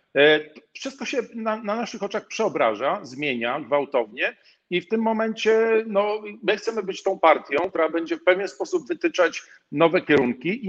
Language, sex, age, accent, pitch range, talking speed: Polish, male, 50-69, native, 140-195 Hz, 150 wpm